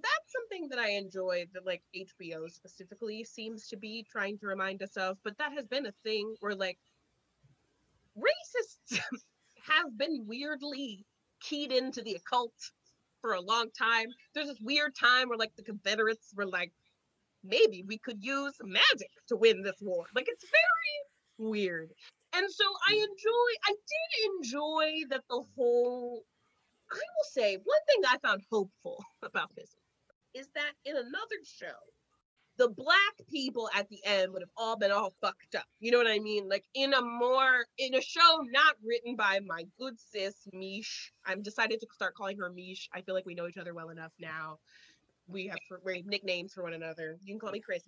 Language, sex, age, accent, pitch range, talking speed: English, female, 30-49, American, 195-295 Hz, 185 wpm